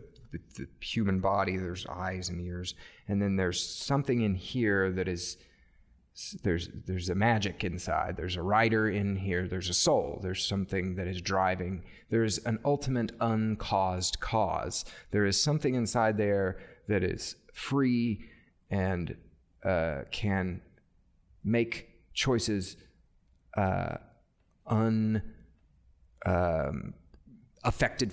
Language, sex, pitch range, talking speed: English, male, 90-115 Hz, 120 wpm